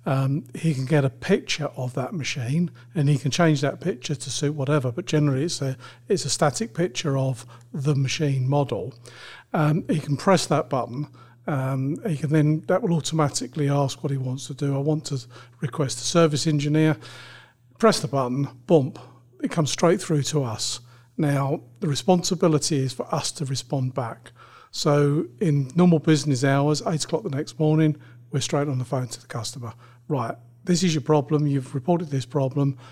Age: 40-59